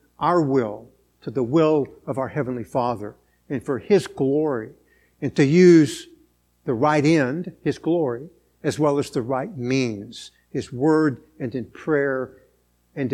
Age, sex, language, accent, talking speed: 60-79, male, English, American, 150 wpm